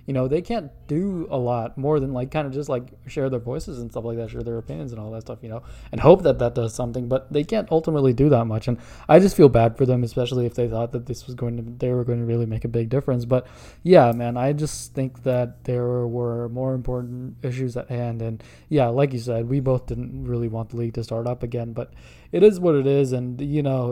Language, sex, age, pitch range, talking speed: English, male, 20-39, 120-135 Hz, 270 wpm